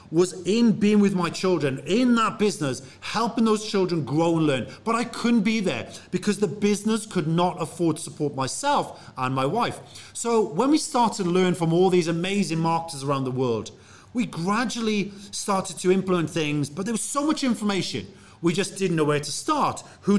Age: 40-59